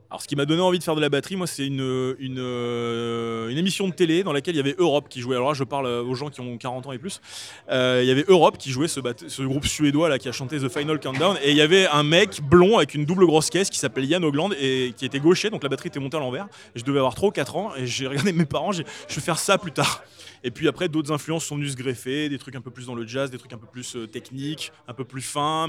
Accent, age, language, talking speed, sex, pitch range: French, 20-39, French, 300 wpm, male, 130-160 Hz